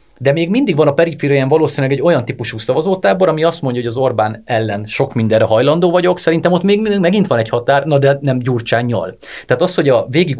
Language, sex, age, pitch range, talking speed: Hungarian, male, 30-49, 110-145 Hz, 225 wpm